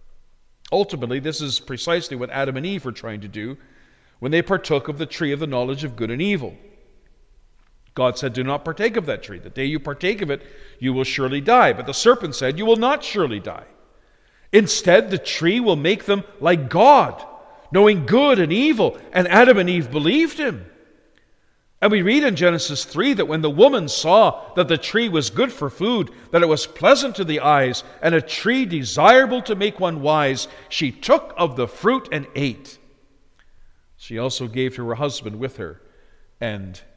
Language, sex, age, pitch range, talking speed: English, male, 50-69, 125-195 Hz, 195 wpm